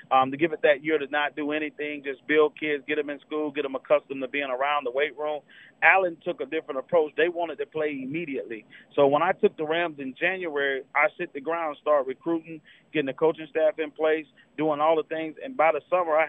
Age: 30-49